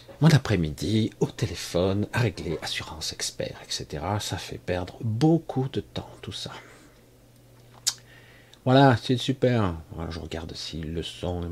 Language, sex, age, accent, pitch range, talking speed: French, male, 50-69, French, 85-115 Hz, 135 wpm